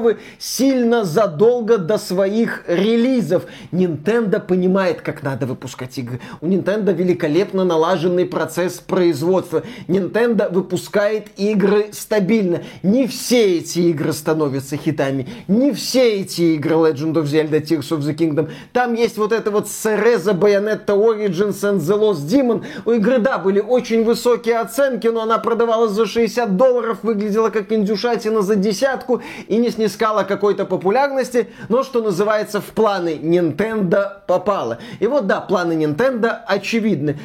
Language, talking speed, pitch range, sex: Russian, 140 wpm, 175-230 Hz, male